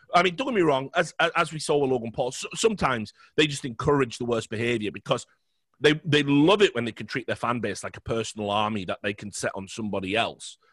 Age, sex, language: 30-49, male, English